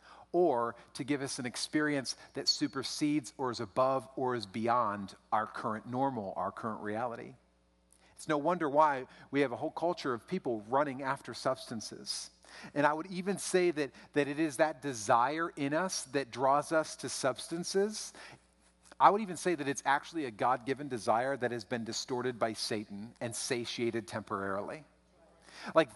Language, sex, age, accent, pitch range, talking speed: English, male, 40-59, American, 115-160 Hz, 165 wpm